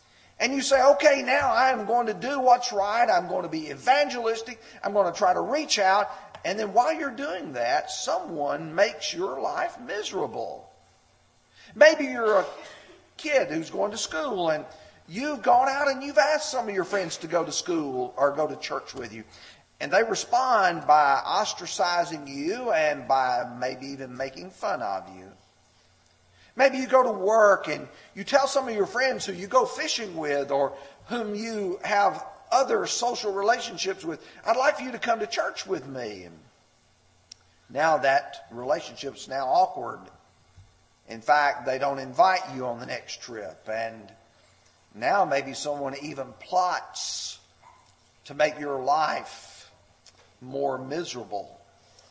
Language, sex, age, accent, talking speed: English, male, 40-59, American, 160 wpm